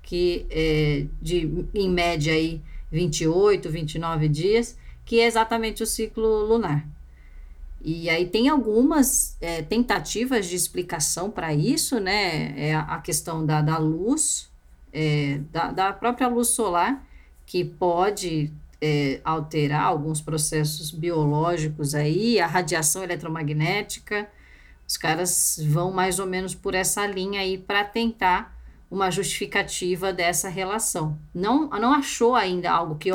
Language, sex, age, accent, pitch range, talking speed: Portuguese, female, 10-29, Brazilian, 155-215 Hz, 120 wpm